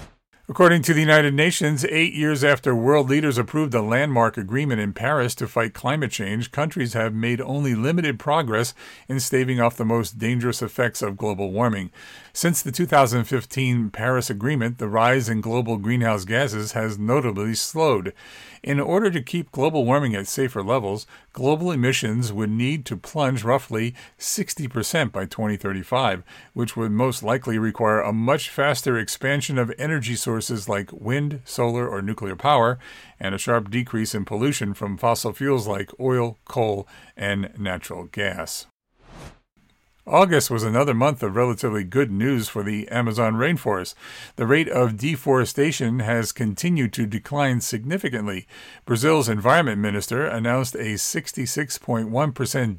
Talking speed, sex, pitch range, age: 145 wpm, male, 110-140 Hz, 50-69